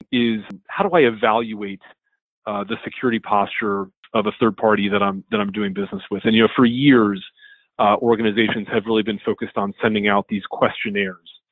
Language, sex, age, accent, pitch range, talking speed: English, male, 30-49, American, 105-130 Hz, 190 wpm